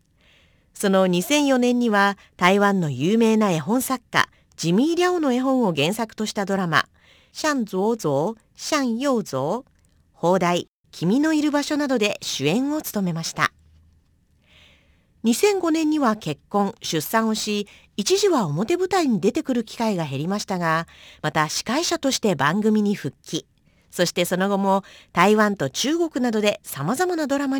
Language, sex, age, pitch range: Japanese, female, 40-59, 165-255 Hz